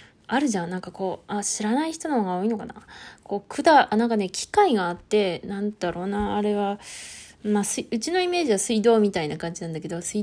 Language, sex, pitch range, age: Japanese, female, 185-235 Hz, 20-39